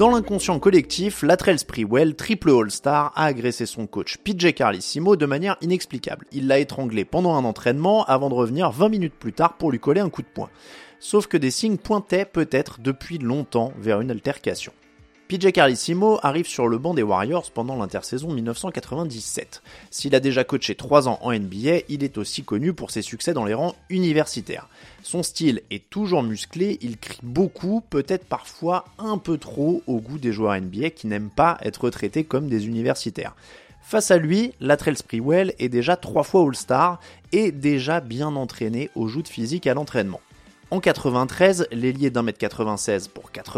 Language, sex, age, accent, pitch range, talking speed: French, male, 30-49, French, 120-175 Hz, 175 wpm